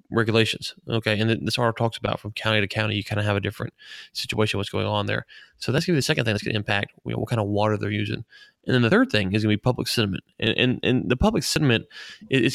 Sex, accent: male, American